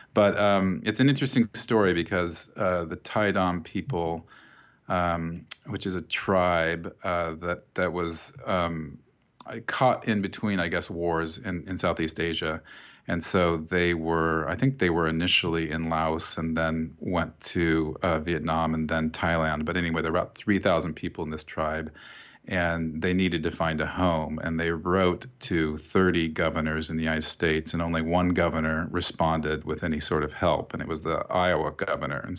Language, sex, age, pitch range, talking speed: English, male, 40-59, 80-95 Hz, 180 wpm